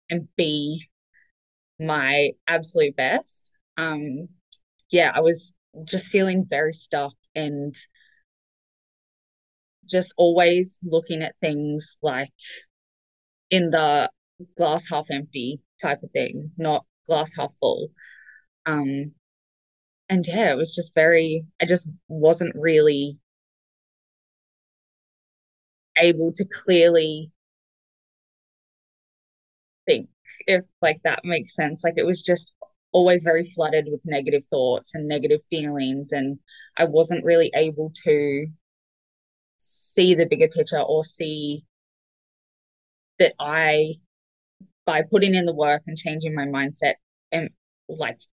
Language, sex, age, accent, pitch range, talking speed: English, female, 20-39, Australian, 150-175 Hz, 110 wpm